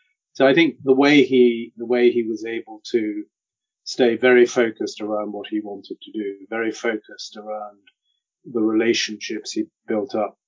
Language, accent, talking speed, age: English, British, 165 wpm, 40-59